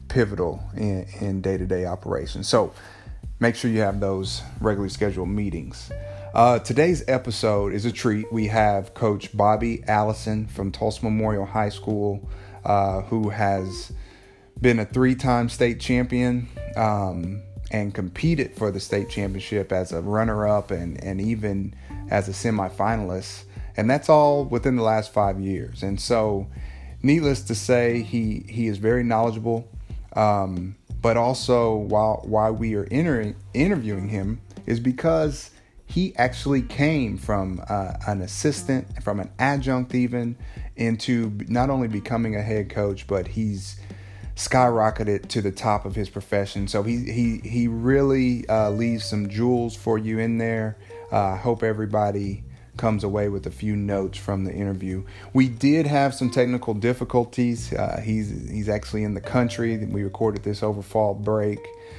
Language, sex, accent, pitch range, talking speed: English, male, American, 100-115 Hz, 150 wpm